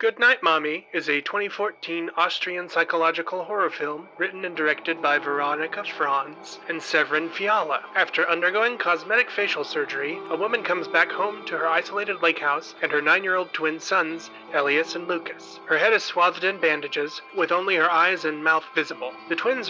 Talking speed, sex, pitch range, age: 170 wpm, male, 155-185 Hz, 30-49